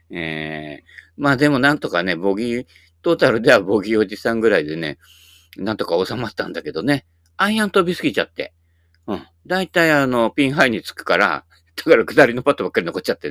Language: Japanese